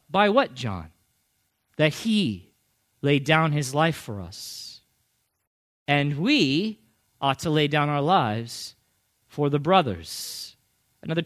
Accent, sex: American, male